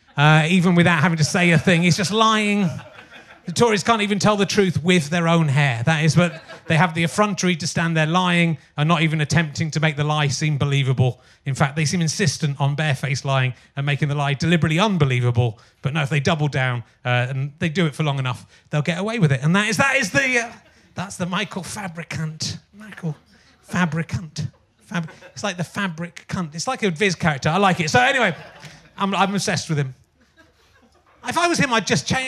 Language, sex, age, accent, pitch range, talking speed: English, male, 30-49, British, 150-200 Hz, 220 wpm